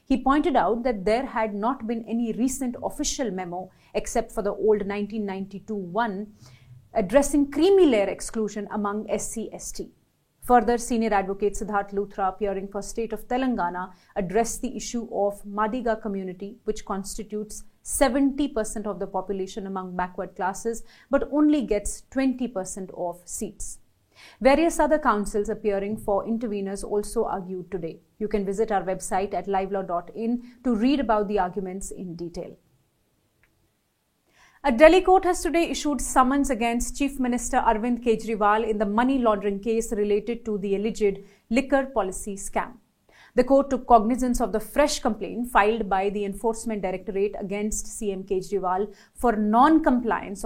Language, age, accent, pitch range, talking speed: English, 30-49, Indian, 200-245 Hz, 145 wpm